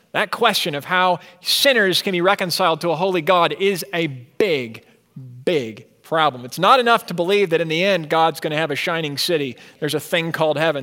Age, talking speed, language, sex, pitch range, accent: 40-59, 210 wpm, English, male, 130-175 Hz, American